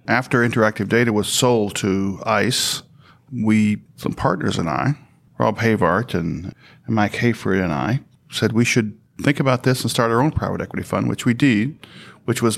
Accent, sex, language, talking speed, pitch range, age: American, male, English, 175 wpm, 105-130 Hz, 50-69